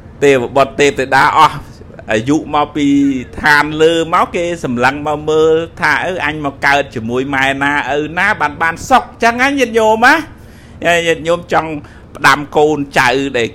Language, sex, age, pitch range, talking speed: English, male, 60-79, 110-155 Hz, 150 wpm